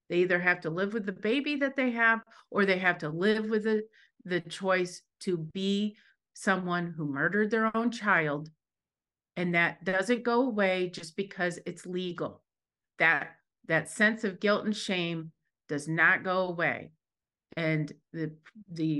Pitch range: 160-205 Hz